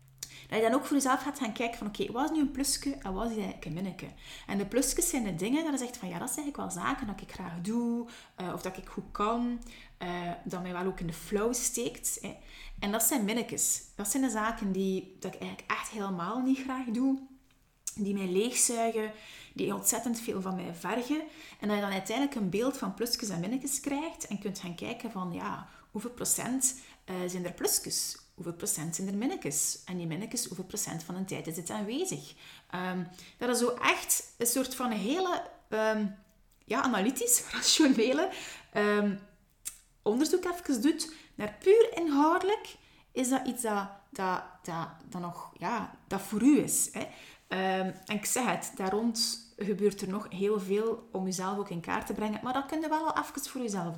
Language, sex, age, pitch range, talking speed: Dutch, female, 30-49, 185-255 Hz, 205 wpm